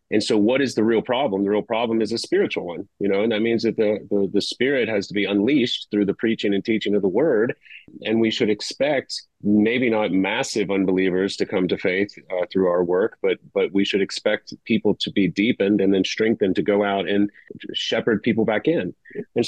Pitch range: 95-110 Hz